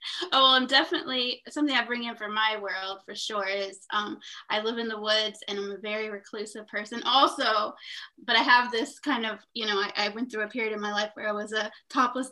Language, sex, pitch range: English, female, 215-265 Hz